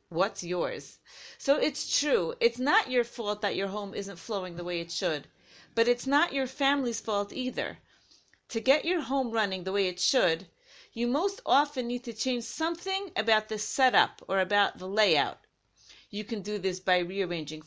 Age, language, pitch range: 40-59, English, 190-255 Hz